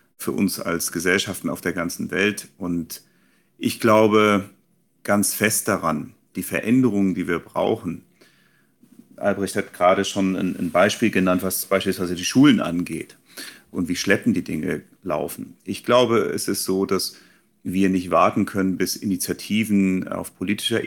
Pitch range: 90-100 Hz